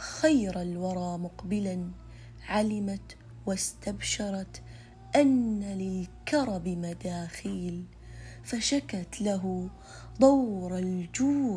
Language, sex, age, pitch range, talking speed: Arabic, female, 20-39, 175-240 Hz, 60 wpm